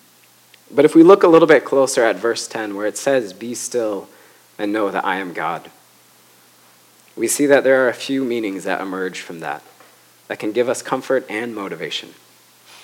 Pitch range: 105-140 Hz